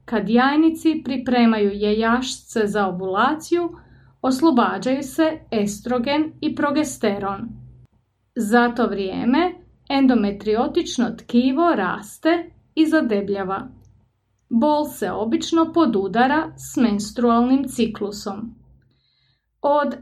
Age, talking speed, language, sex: 30-49, 80 wpm, Croatian, female